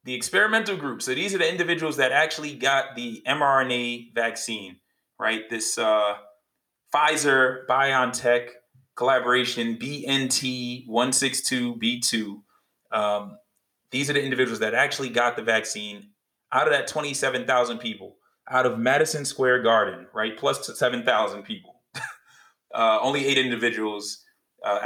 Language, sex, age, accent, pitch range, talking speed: English, male, 30-49, American, 110-135 Hz, 120 wpm